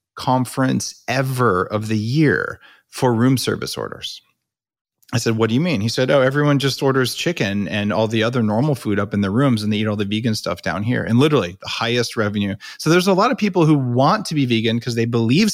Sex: male